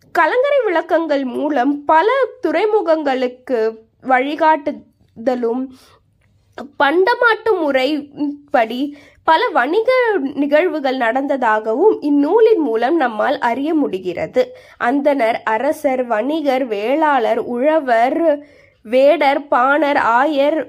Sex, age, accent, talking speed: female, 20-39, native, 75 wpm